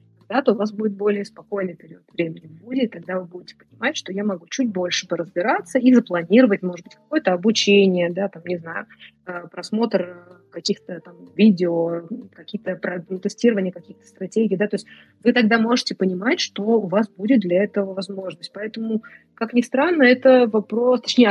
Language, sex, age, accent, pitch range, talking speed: Russian, female, 20-39, native, 185-230 Hz, 170 wpm